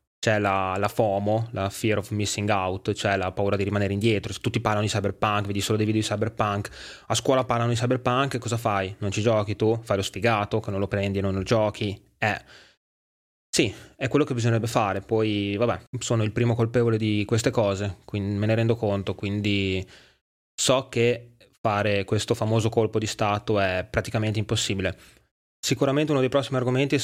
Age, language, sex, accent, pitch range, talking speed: 20-39, Italian, male, native, 100-120 Hz, 190 wpm